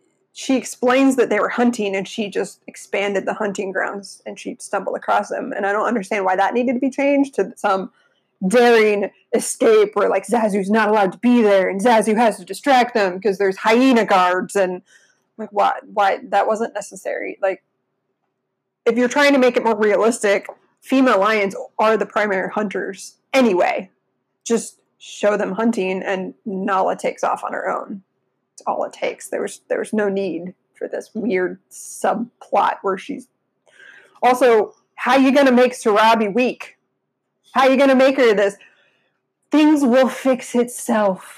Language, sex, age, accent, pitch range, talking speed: English, female, 20-39, American, 200-260 Hz, 175 wpm